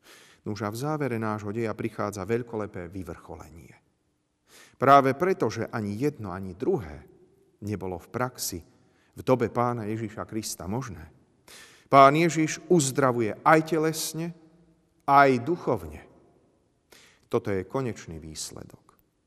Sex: male